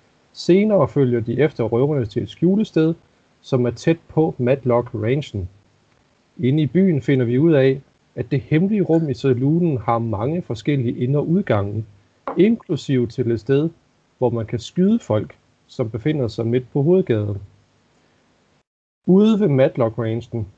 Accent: native